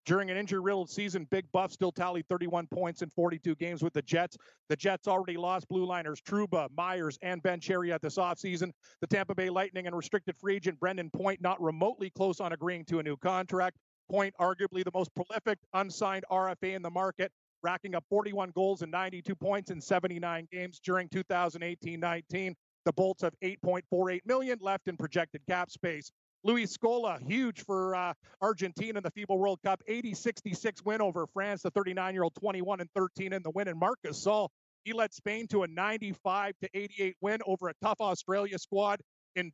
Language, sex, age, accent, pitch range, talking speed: English, male, 40-59, American, 180-205 Hz, 185 wpm